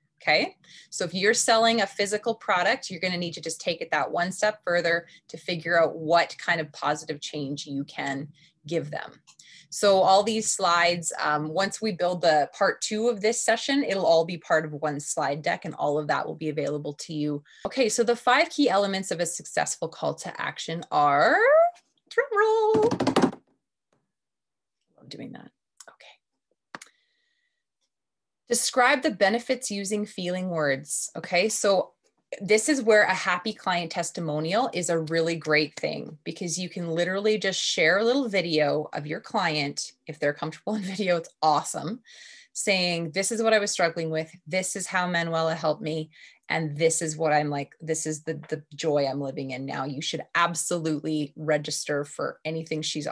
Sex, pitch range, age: female, 155-215 Hz, 20-39